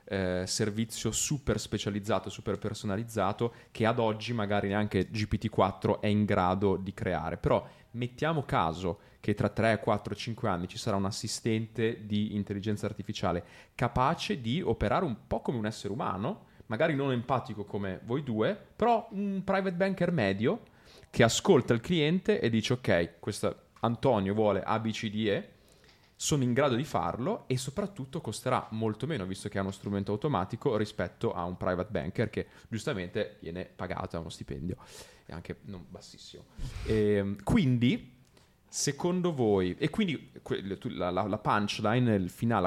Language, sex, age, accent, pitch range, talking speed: Italian, male, 30-49, native, 100-130 Hz, 155 wpm